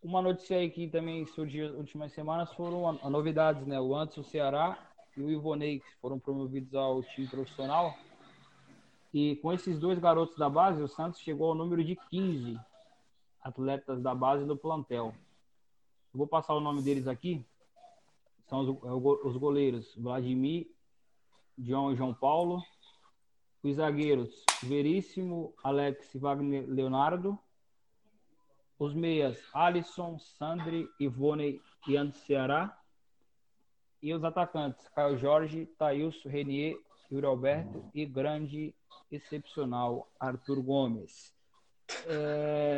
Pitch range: 135-160 Hz